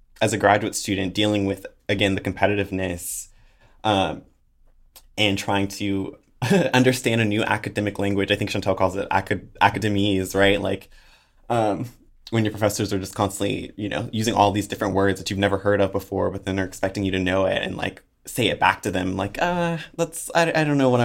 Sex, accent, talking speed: male, American, 200 wpm